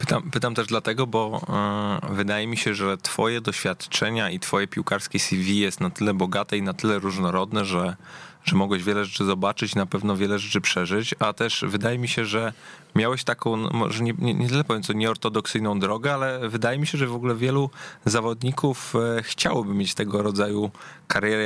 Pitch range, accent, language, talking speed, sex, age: 100-120 Hz, Polish, English, 180 wpm, male, 20-39